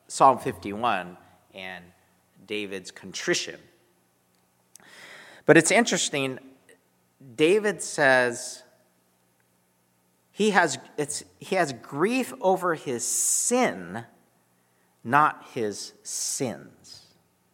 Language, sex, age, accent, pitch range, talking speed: English, male, 40-59, American, 105-150 Hz, 75 wpm